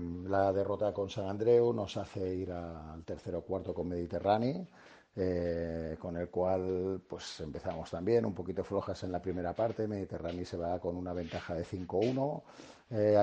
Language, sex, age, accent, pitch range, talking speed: Spanish, male, 50-69, Spanish, 90-110 Hz, 165 wpm